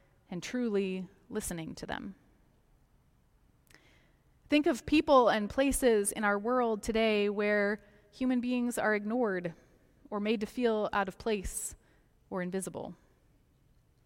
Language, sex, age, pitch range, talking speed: English, female, 20-39, 205-245 Hz, 120 wpm